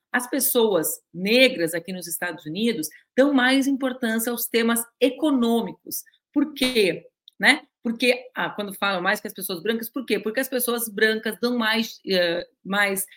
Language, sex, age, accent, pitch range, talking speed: Portuguese, female, 40-59, Brazilian, 190-245 Hz, 145 wpm